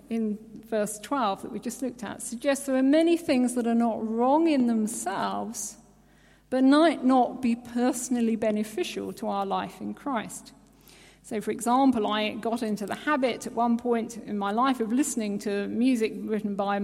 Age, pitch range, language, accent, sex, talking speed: 50-69, 210-265 Hz, English, British, female, 180 wpm